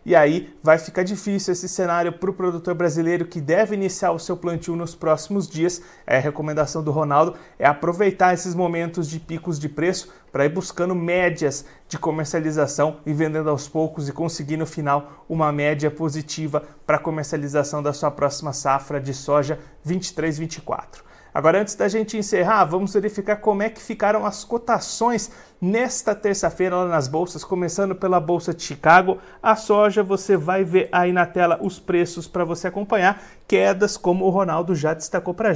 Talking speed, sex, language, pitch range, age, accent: 175 wpm, male, Portuguese, 160-195 Hz, 30-49, Brazilian